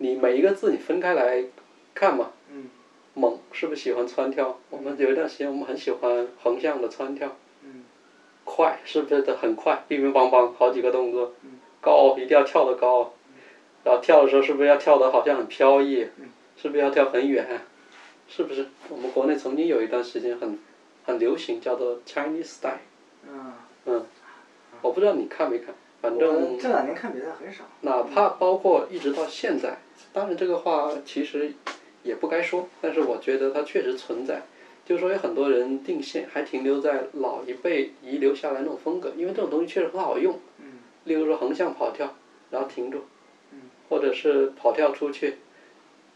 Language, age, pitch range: Chinese, 20-39, 130-195 Hz